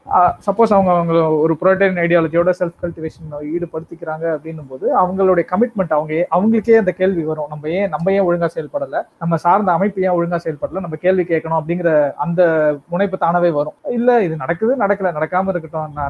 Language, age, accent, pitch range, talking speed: Tamil, 20-39, native, 155-185 Hz, 165 wpm